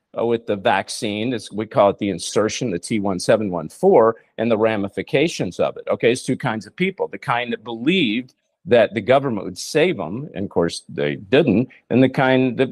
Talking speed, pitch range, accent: 195 wpm, 110-135 Hz, American